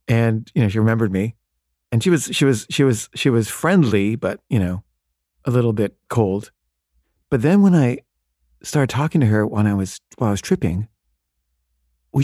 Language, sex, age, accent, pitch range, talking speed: English, male, 40-59, American, 90-120 Hz, 190 wpm